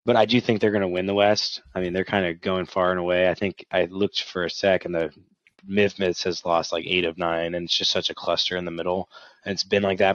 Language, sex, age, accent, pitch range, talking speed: English, male, 20-39, American, 90-105 Hz, 290 wpm